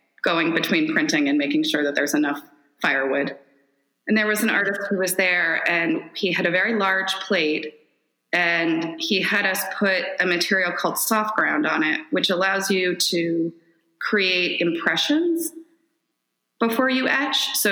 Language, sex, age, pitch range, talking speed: English, female, 20-39, 170-235 Hz, 160 wpm